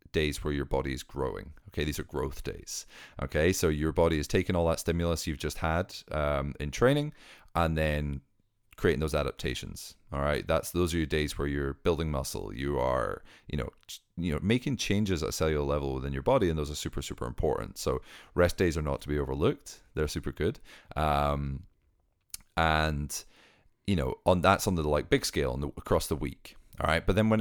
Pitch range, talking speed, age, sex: 70-90 Hz, 200 wpm, 30-49, male